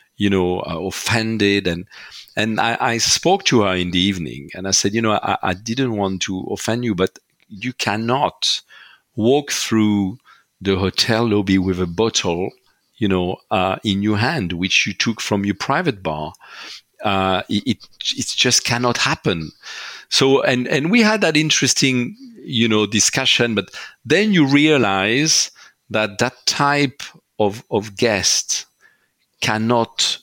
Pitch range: 95-120 Hz